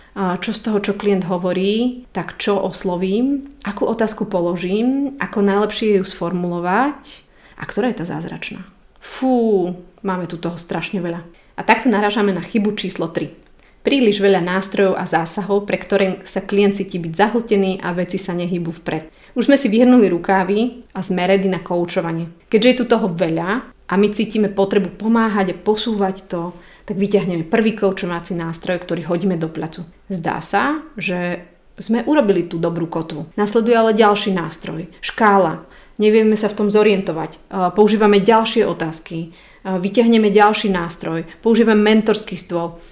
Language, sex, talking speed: Slovak, female, 150 wpm